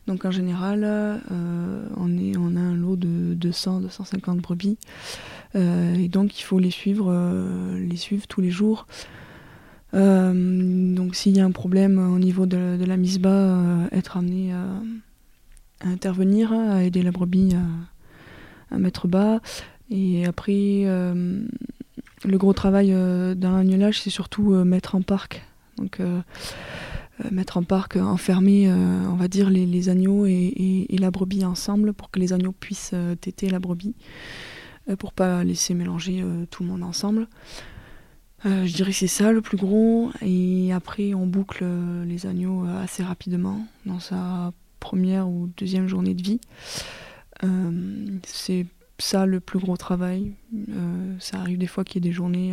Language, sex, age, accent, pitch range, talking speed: French, female, 20-39, French, 180-195 Hz, 175 wpm